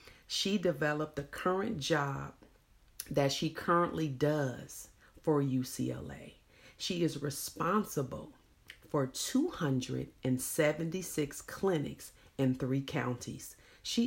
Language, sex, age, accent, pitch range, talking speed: English, female, 40-59, American, 130-165 Hz, 90 wpm